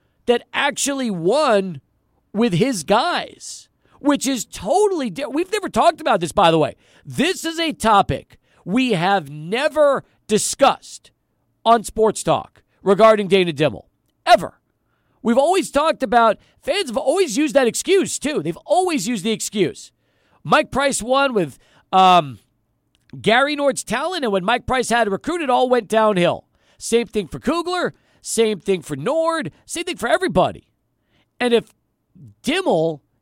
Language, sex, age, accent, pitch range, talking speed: English, male, 40-59, American, 170-265 Hz, 145 wpm